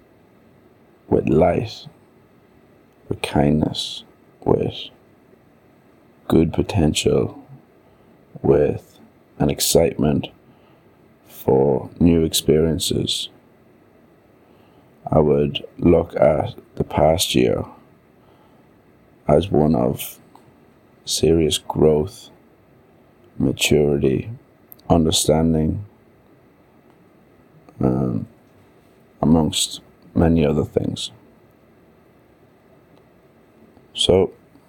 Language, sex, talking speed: English, male, 55 wpm